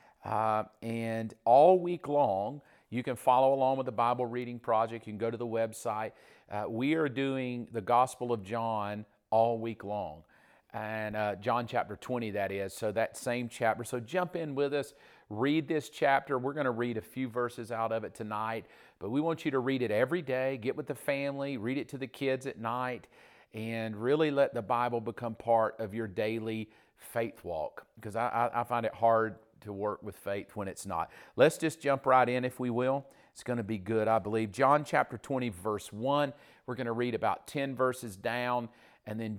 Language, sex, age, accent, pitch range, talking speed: English, male, 40-59, American, 110-130 Hz, 205 wpm